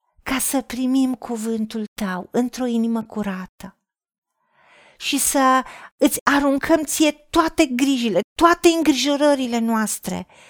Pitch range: 230-285 Hz